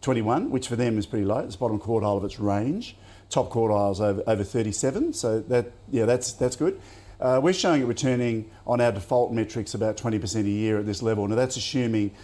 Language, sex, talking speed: English, male, 215 wpm